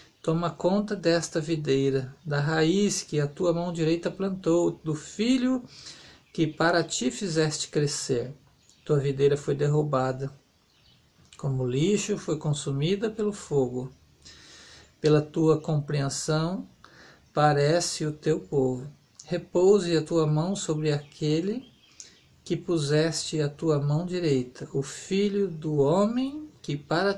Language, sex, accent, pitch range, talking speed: Portuguese, male, Brazilian, 140-170 Hz, 120 wpm